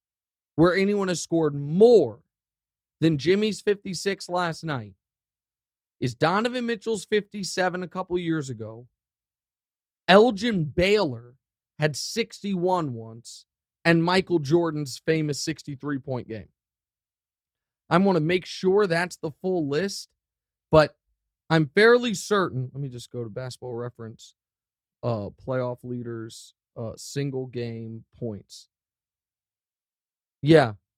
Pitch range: 120-170 Hz